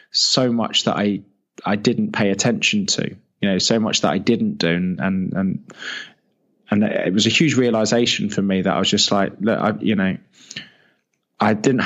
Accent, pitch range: British, 100-115 Hz